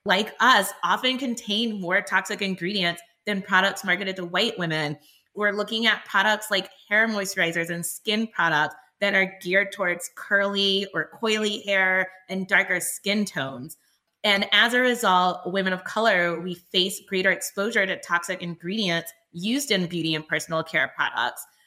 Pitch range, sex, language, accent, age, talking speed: 175-205 Hz, female, English, American, 20-39, 155 wpm